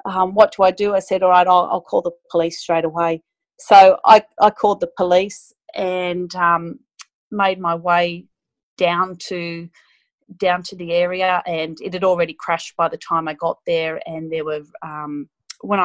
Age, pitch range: 30-49, 165-195 Hz